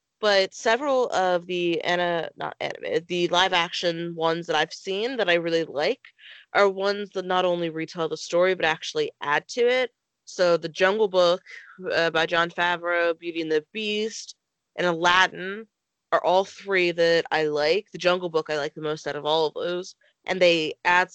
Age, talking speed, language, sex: 20-39, 185 wpm, English, female